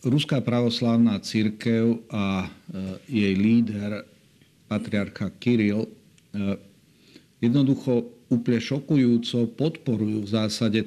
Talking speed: 75 wpm